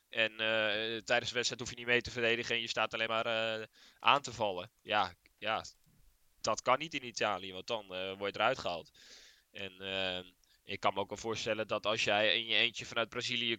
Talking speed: 220 wpm